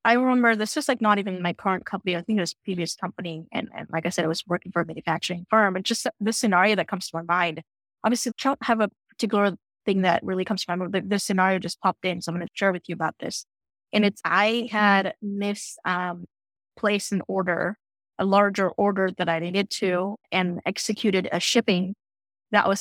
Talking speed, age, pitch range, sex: 230 wpm, 10-29, 180-215 Hz, female